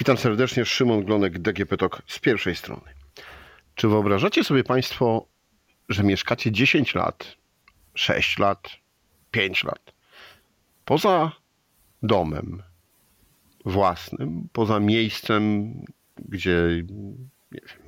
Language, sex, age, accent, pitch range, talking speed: Polish, male, 50-69, native, 90-120 Hz, 90 wpm